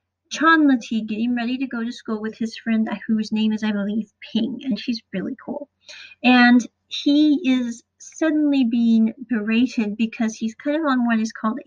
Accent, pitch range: American, 220-265 Hz